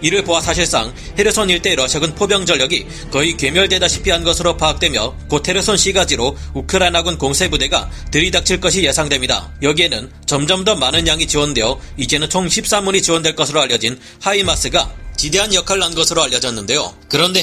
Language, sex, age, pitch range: Korean, male, 30-49, 140-185 Hz